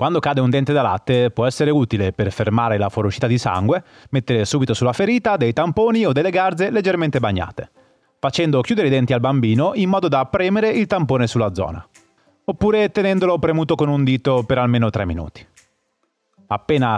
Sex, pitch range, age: male, 110-160 Hz, 30-49